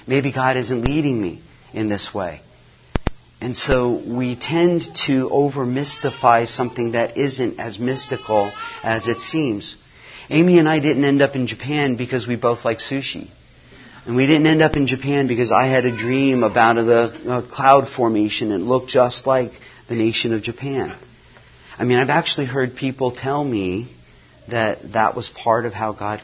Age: 40-59